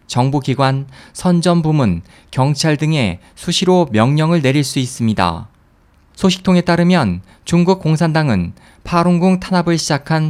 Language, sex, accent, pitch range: Korean, male, native, 120-175 Hz